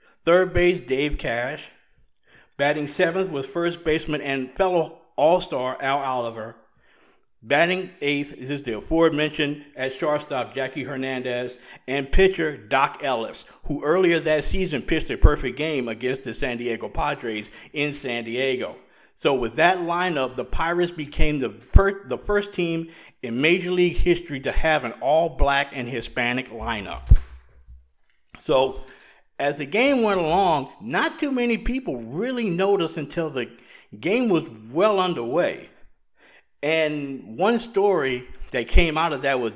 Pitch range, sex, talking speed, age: 130-175 Hz, male, 140 wpm, 50-69